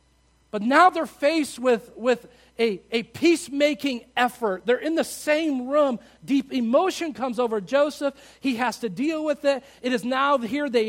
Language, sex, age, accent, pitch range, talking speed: English, male, 50-69, American, 170-255 Hz, 170 wpm